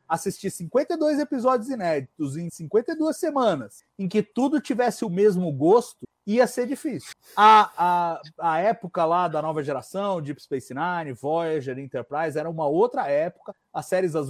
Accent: Brazilian